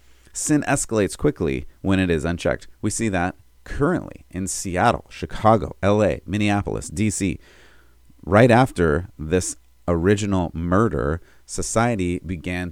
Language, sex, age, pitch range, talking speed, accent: English, male, 30-49, 80-100 Hz, 115 wpm, American